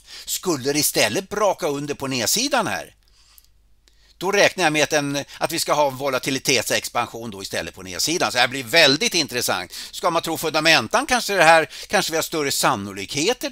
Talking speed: 180 wpm